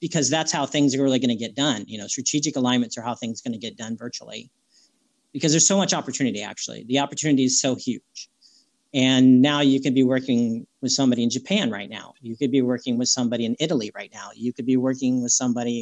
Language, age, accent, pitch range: English, 40-59, American, 120-165 Hz